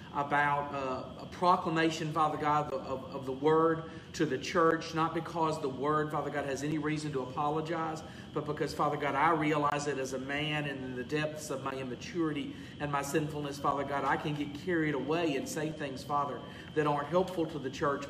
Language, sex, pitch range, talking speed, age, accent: English, male, 145-170 Hz, 205 wpm, 40-59, American